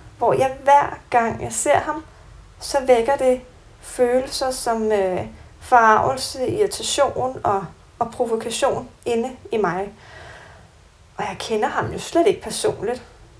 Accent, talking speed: native, 130 wpm